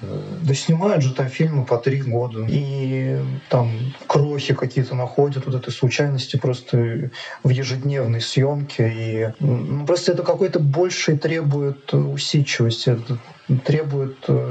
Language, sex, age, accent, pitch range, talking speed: Russian, male, 20-39, native, 130-150 Hz, 115 wpm